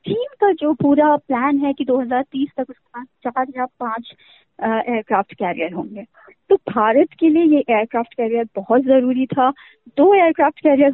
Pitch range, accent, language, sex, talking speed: 240-330 Hz, native, Hindi, female, 165 wpm